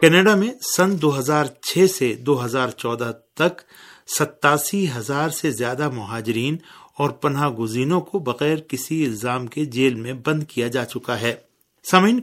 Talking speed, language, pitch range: 140 wpm, Urdu, 125-160 Hz